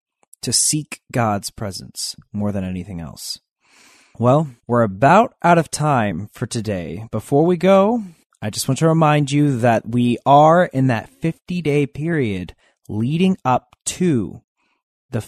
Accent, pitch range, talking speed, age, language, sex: American, 115-170 Hz, 145 wpm, 30-49, English, male